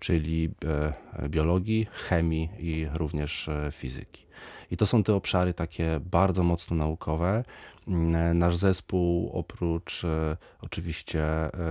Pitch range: 80-90 Hz